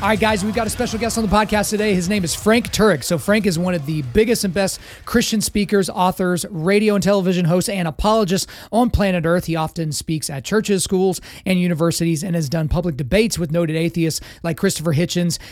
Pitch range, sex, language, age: 165-195 Hz, male, English, 30-49